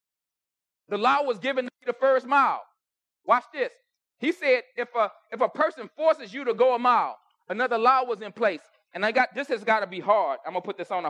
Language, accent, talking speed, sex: English, American, 240 wpm, male